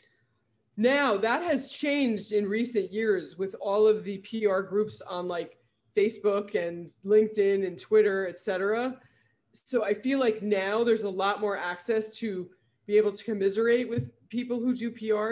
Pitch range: 185-230 Hz